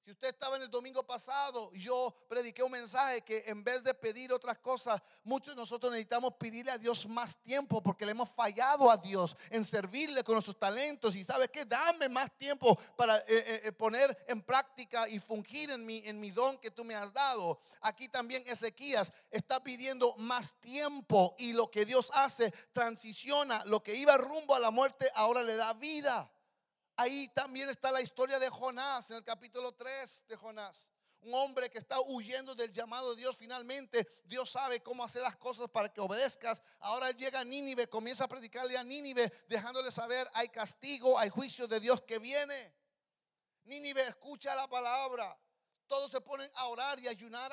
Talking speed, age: 185 wpm, 40-59